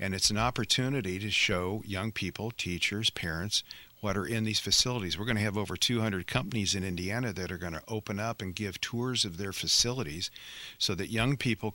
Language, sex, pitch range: English, male, 90-115 Hz